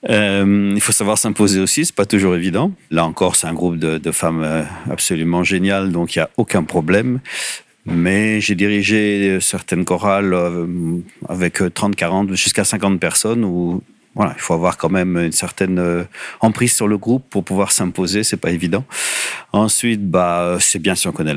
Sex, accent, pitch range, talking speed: male, French, 85-105 Hz, 175 wpm